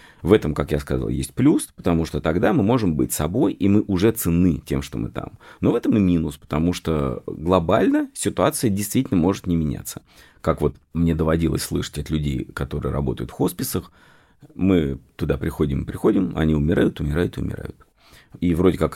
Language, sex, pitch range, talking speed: Russian, male, 75-100 Hz, 185 wpm